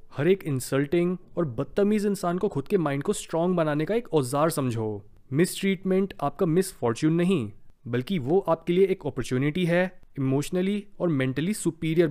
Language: Hindi